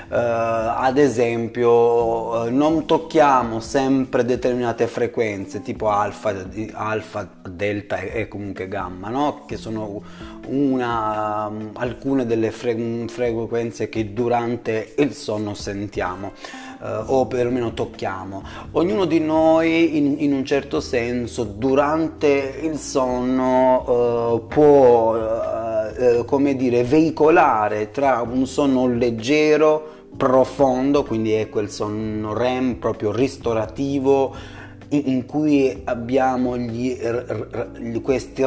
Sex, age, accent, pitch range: male, 30-49, native, 110-135 Hz